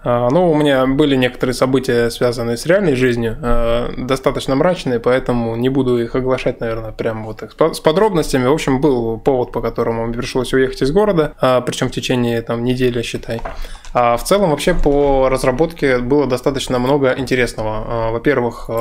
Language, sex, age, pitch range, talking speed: Russian, male, 20-39, 120-145 Hz, 155 wpm